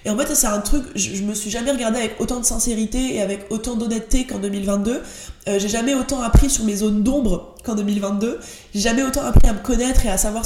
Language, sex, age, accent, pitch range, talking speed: French, female, 20-39, French, 210-260 Hz, 240 wpm